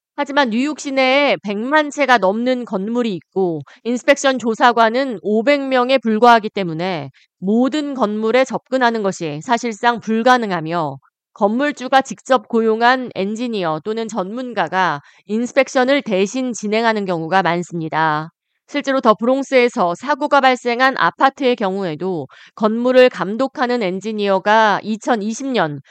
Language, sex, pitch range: Korean, female, 190-255 Hz